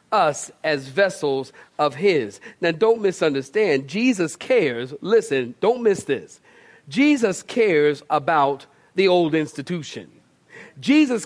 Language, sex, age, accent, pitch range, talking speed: English, male, 40-59, American, 180-245 Hz, 110 wpm